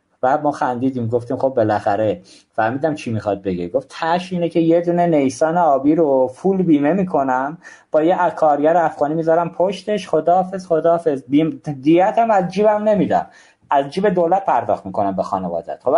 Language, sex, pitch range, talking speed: Persian, male, 115-160 Hz, 160 wpm